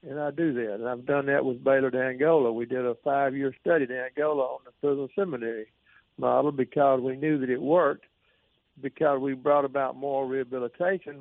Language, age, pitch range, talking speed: English, 60-79, 130-150 Hz, 185 wpm